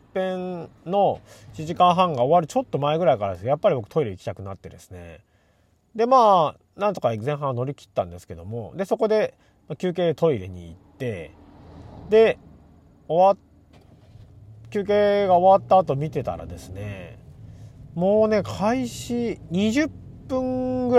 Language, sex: Japanese, male